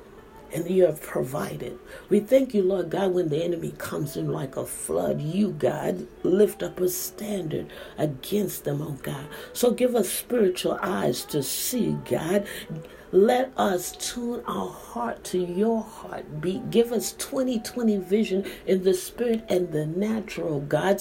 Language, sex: English, female